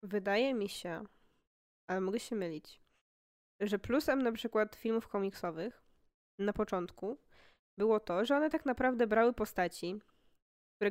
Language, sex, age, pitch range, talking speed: Polish, female, 20-39, 200-240 Hz, 130 wpm